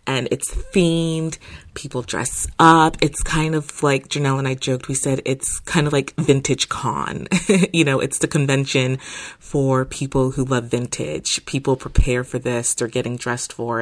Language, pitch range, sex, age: English, 125-155 Hz, female, 30-49